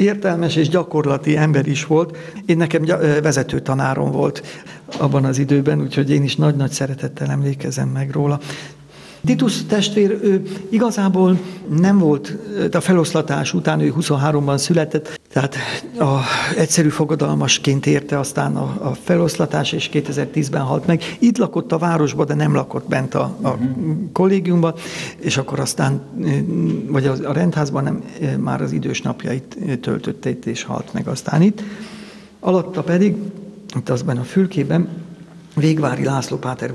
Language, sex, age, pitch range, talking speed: Hungarian, male, 60-79, 145-180 Hz, 135 wpm